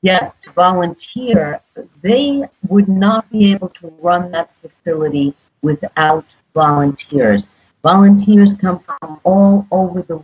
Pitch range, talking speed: 160-205 Hz, 115 wpm